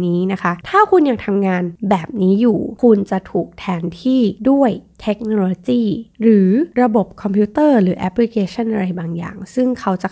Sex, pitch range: female, 180-230 Hz